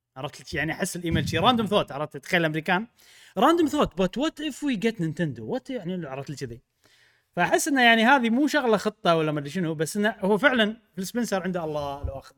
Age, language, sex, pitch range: 30-49, Arabic, male, 135-200 Hz